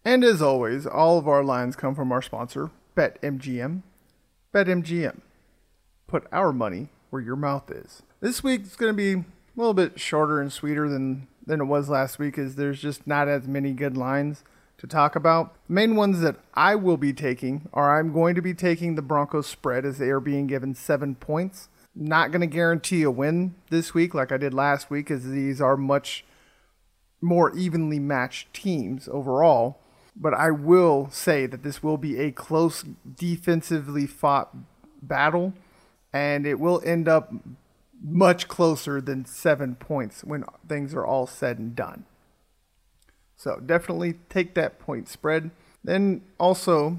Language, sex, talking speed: English, male, 170 wpm